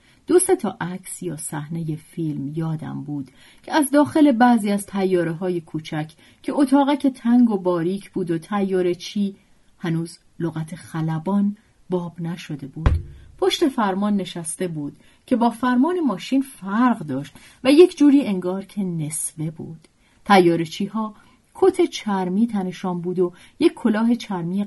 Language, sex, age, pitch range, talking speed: Persian, female, 40-59, 155-205 Hz, 145 wpm